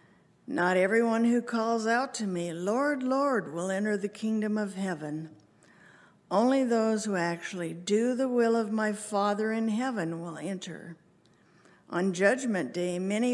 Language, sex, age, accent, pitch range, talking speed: English, female, 60-79, American, 180-230 Hz, 150 wpm